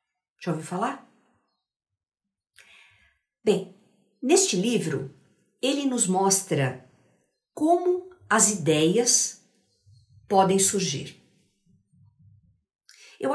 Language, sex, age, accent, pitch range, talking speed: Portuguese, female, 50-69, Brazilian, 160-225 Hz, 65 wpm